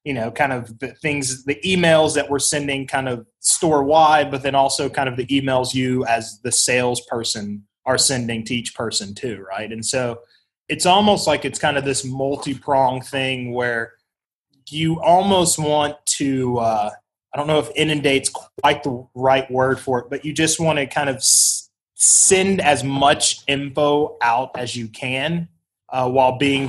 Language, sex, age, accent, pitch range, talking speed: English, male, 20-39, American, 125-145 Hz, 180 wpm